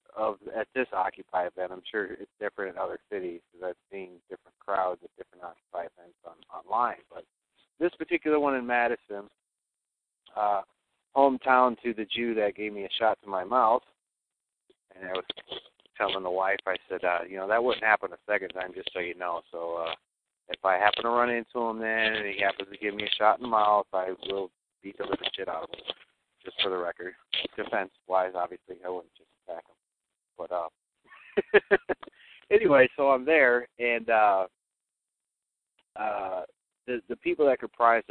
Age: 40-59